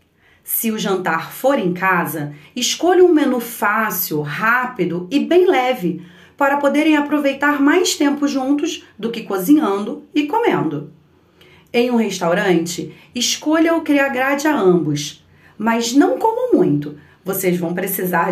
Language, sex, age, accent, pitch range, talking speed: Portuguese, female, 30-49, Brazilian, 180-280 Hz, 130 wpm